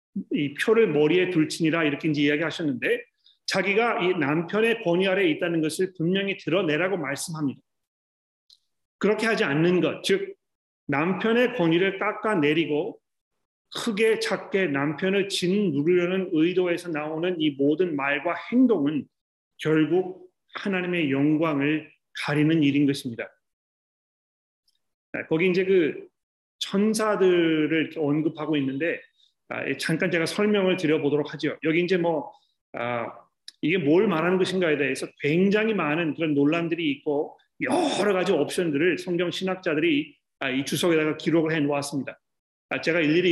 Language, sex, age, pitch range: Korean, male, 40-59, 150-195 Hz